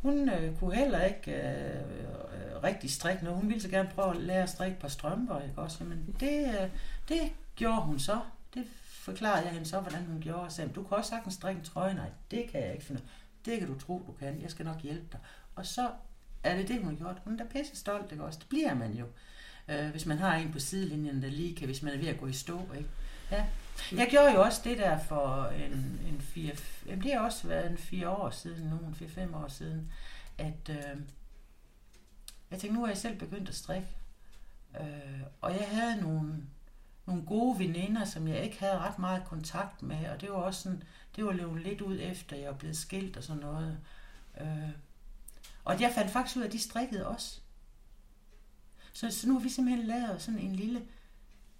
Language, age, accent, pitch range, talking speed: English, 60-79, Danish, 150-205 Hz, 220 wpm